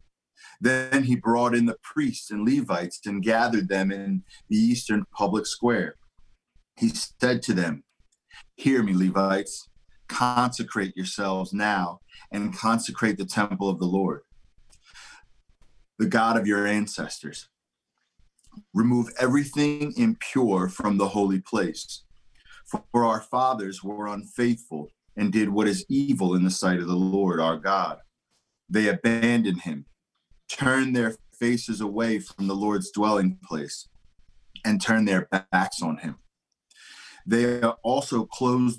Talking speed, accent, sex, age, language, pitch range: 130 wpm, American, male, 40-59, English, 95-120 Hz